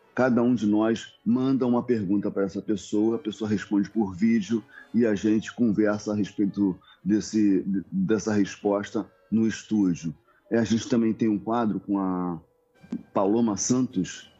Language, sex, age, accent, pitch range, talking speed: Portuguese, male, 30-49, Brazilian, 95-115 Hz, 155 wpm